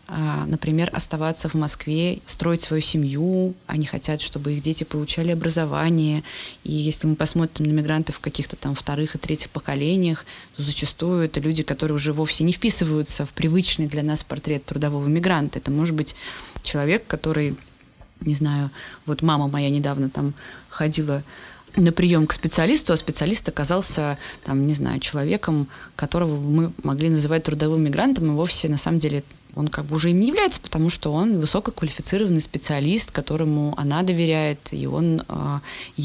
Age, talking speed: 20-39, 160 wpm